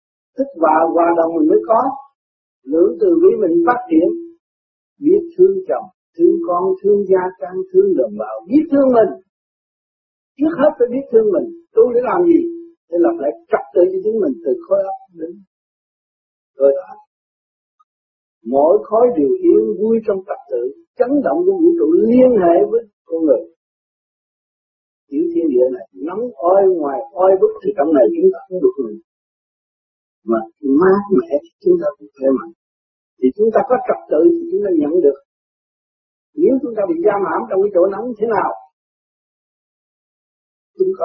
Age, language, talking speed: 50-69, Vietnamese, 170 wpm